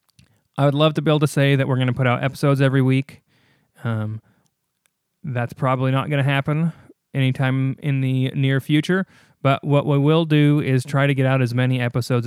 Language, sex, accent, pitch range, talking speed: English, male, American, 125-140 Hz, 205 wpm